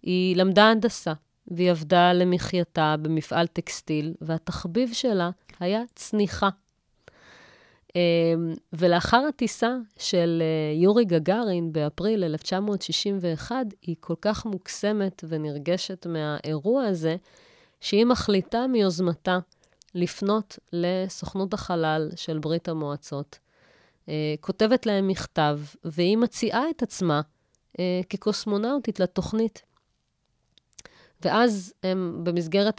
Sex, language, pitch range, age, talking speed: female, Hebrew, 155-195 Hz, 30-49, 85 wpm